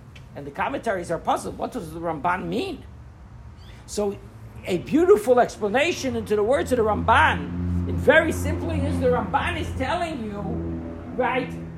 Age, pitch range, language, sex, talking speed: 50-69, 165-250 Hz, English, male, 155 wpm